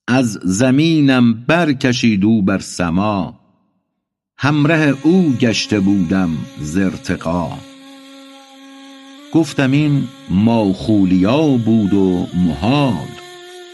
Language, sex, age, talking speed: Persian, male, 60-79, 70 wpm